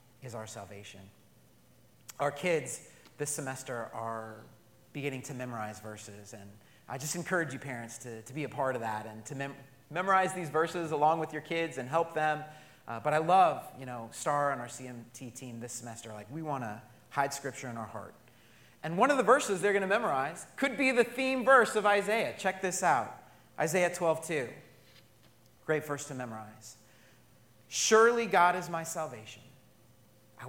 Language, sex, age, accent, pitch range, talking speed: English, male, 30-49, American, 110-145 Hz, 175 wpm